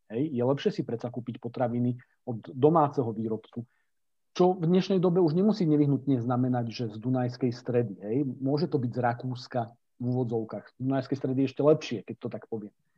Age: 40-59